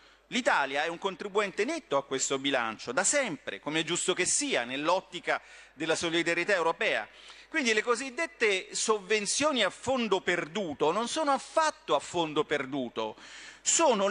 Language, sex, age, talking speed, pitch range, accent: Italian, male, 40-59, 140 wpm, 150-230 Hz, native